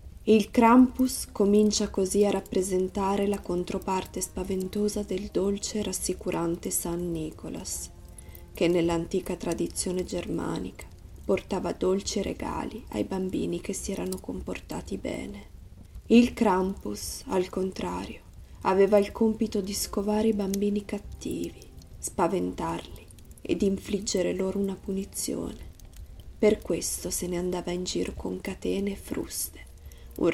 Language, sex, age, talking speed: Italian, female, 20-39, 115 wpm